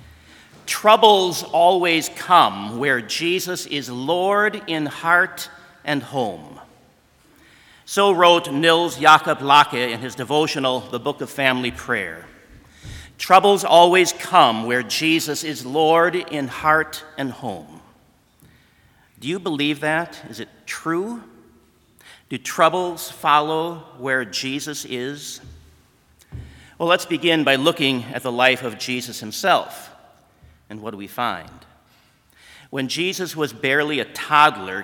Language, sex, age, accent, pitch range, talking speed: English, male, 50-69, American, 130-175 Hz, 120 wpm